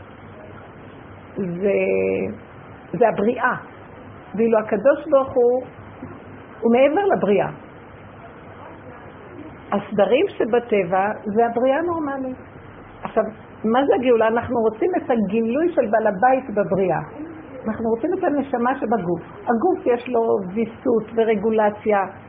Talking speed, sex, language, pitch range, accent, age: 100 wpm, female, Hebrew, 210-260 Hz, native, 50-69